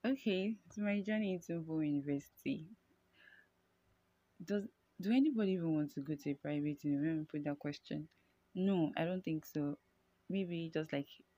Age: 20-39